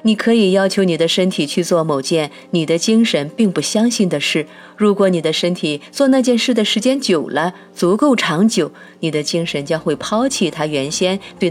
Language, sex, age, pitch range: Chinese, female, 30-49, 155-200 Hz